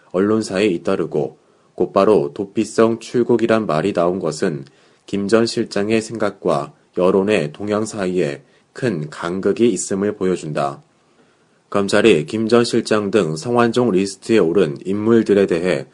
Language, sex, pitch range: Korean, male, 100-115 Hz